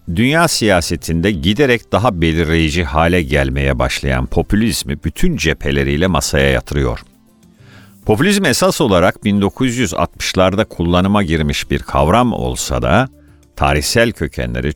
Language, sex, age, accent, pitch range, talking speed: Turkish, male, 50-69, native, 80-115 Hz, 100 wpm